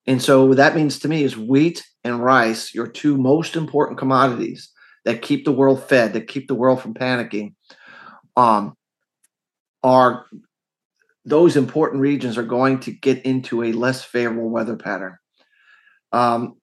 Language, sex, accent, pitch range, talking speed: English, male, American, 120-145 Hz, 155 wpm